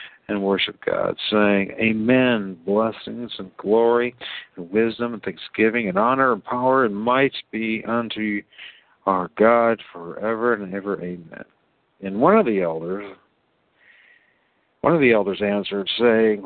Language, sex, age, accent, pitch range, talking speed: English, male, 60-79, American, 100-125 Hz, 135 wpm